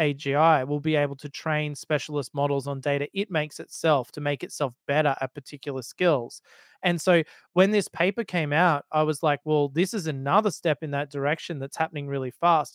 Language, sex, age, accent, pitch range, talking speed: English, male, 20-39, Australian, 145-165 Hz, 200 wpm